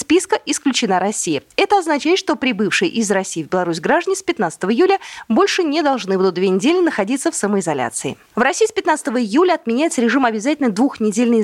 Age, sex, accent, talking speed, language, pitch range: 20-39, female, native, 175 wpm, Russian, 200-315 Hz